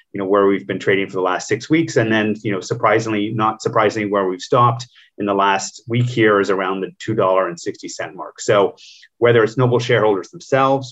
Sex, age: male, 30-49